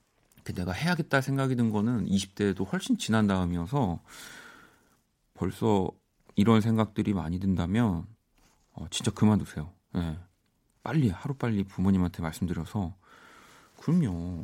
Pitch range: 90-125 Hz